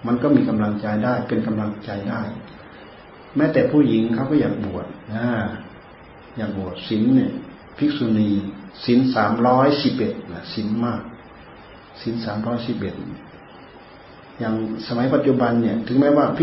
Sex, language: male, Thai